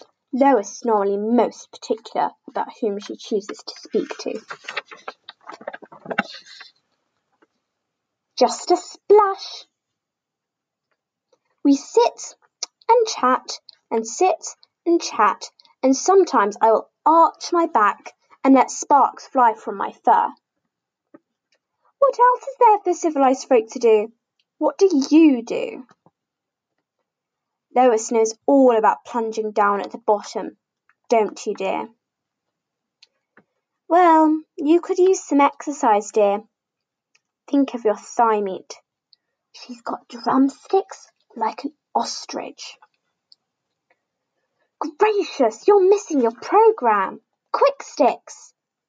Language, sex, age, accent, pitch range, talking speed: English, female, 10-29, British, 225-355 Hz, 105 wpm